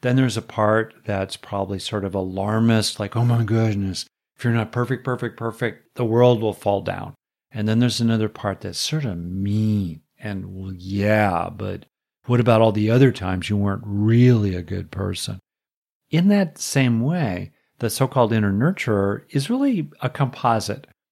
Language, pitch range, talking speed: English, 100-130 Hz, 175 wpm